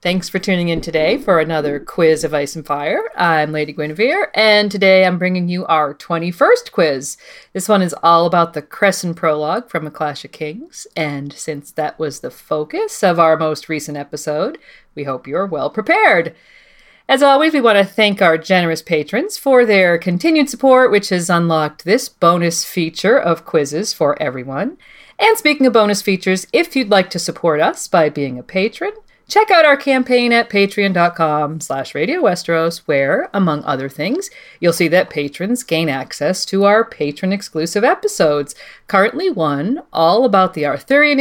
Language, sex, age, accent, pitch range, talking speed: English, female, 40-59, American, 155-235 Hz, 170 wpm